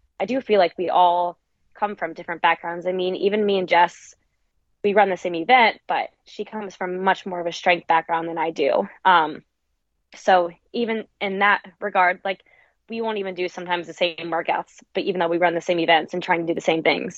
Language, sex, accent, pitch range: English, female, American, 170-195 Hz